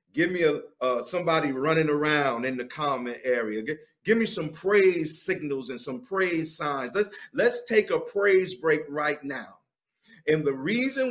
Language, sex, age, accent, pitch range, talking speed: English, male, 50-69, American, 155-220 Hz, 175 wpm